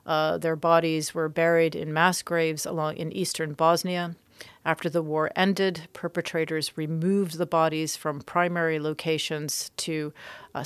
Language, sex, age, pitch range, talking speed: English, female, 40-59, 155-180 Hz, 140 wpm